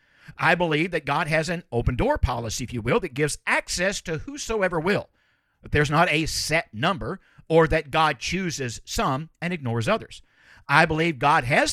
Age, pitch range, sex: 50-69, 125-170 Hz, male